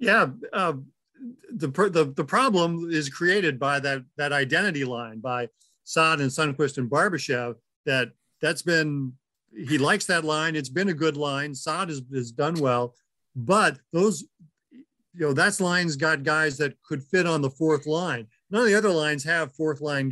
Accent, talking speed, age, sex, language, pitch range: American, 175 wpm, 50-69, male, English, 135-175 Hz